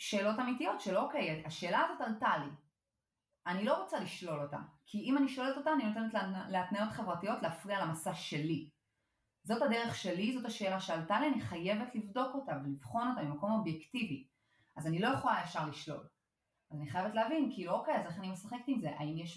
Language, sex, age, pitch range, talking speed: Hebrew, female, 30-49, 155-220 Hz, 185 wpm